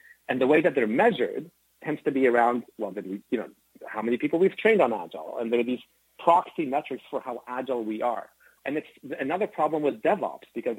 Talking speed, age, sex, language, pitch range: 210 wpm, 30-49, male, English, 120-150 Hz